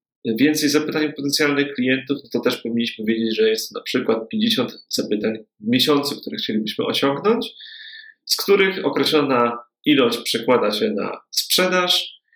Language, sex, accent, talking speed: Polish, male, native, 130 wpm